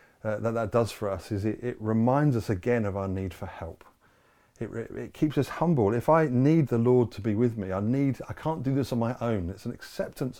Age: 30-49